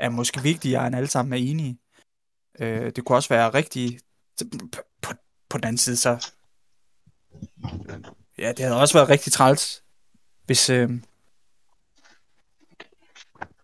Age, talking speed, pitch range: 20-39, 120 wpm, 125-155 Hz